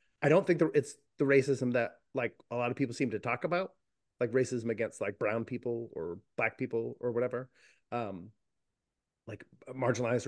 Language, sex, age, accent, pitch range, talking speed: English, male, 30-49, American, 115-140 Hz, 175 wpm